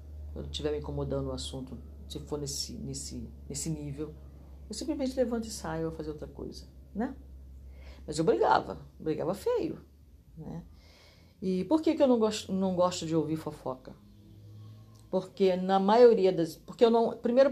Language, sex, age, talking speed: Portuguese, female, 50-69, 160 wpm